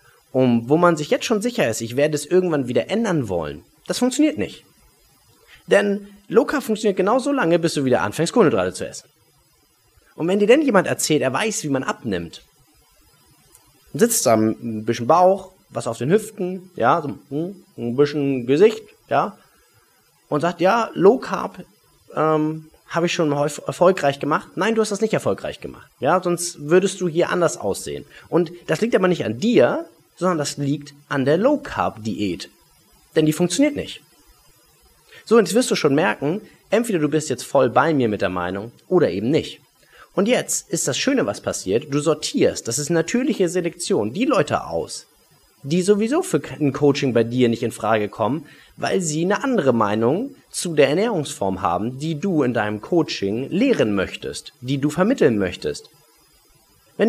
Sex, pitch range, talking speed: male, 135-195 Hz, 175 wpm